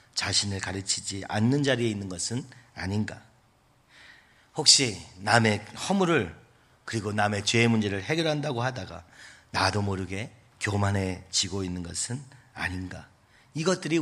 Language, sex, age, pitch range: Korean, male, 40-59, 100-130 Hz